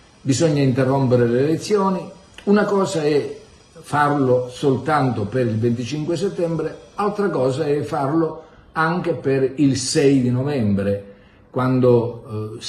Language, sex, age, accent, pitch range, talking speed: Italian, male, 50-69, native, 105-150 Hz, 120 wpm